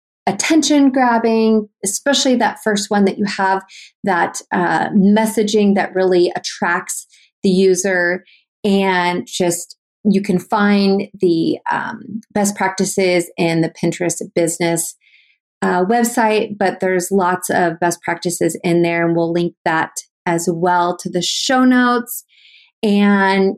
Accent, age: American, 30-49